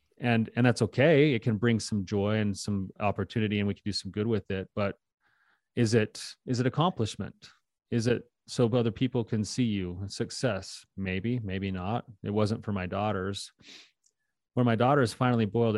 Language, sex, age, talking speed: English, male, 30-49, 185 wpm